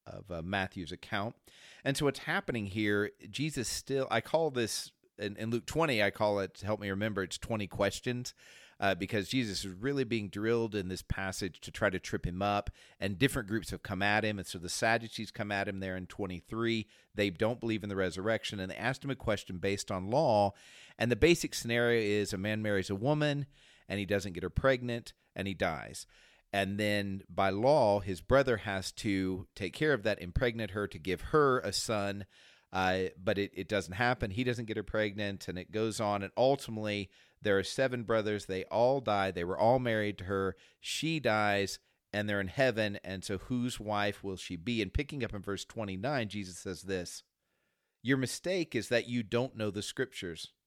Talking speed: 205 wpm